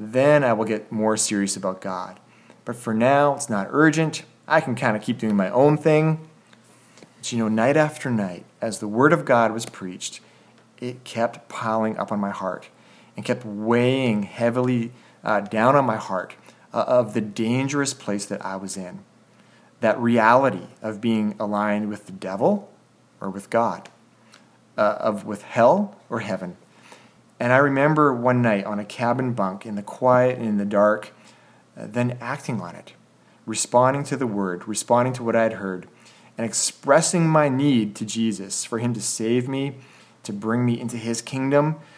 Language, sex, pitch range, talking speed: English, male, 105-130 Hz, 180 wpm